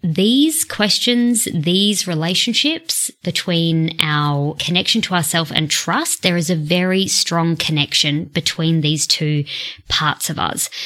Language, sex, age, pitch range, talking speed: English, female, 20-39, 165-220 Hz, 125 wpm